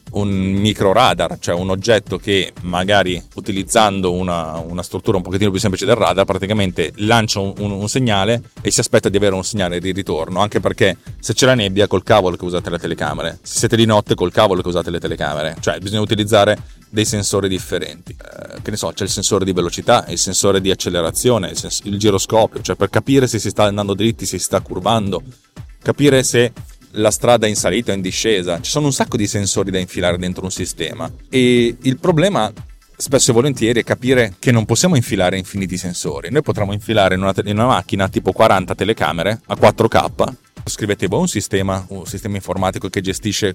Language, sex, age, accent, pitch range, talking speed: Italian, male, 30-49, native, 95-115 Hz, 200 wpm